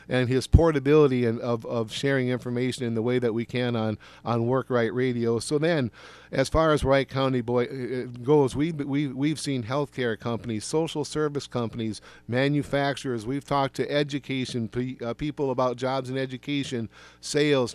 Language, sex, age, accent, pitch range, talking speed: English, male, 50-69, American, 125-145 Hz, 170 wpm